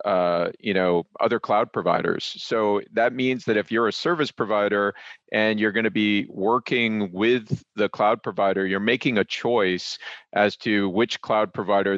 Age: 40-59